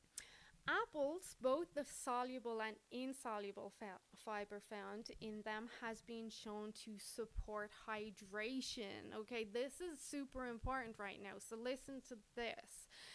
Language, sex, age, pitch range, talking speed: English, female, 20-39, 210-255 Hz, 130 wpm